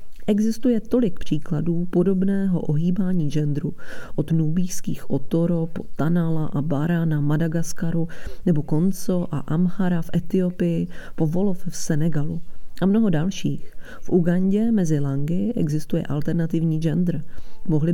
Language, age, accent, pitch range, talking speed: English, 30-49, Czech, 155-195 Hz, 115 wpm